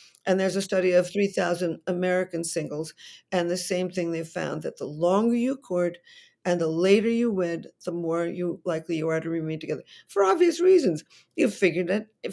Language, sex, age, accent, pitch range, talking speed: English, female, 50-69, American, 175-225 Hz, 190 wpm